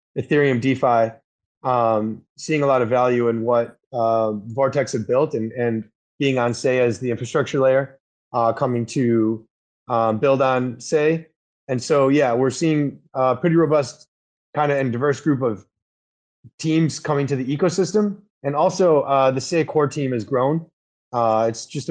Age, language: 30-49, English